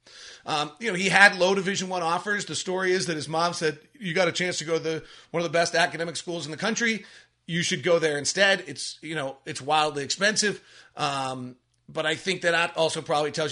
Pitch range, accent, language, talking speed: 155-200 Hz, American, English, 235 wpm